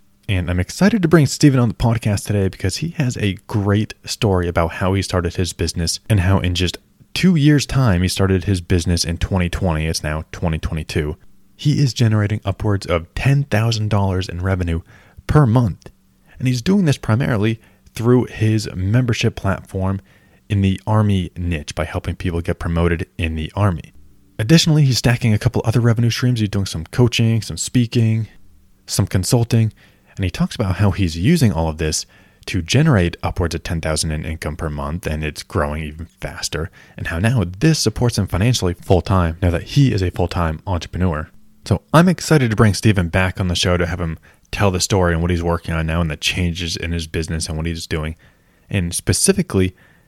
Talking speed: 190 wpm